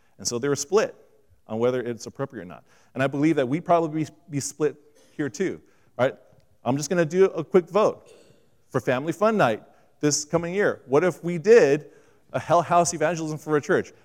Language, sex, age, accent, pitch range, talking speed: English, male, 40-59, American, 115-170 Hz, 205 wpm